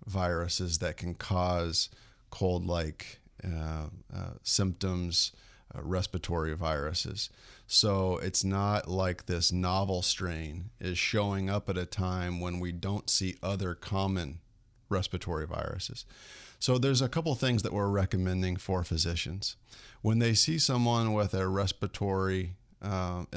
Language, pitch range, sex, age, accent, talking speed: English, 90-105 Hz, male, 40-59, American, 125 wpm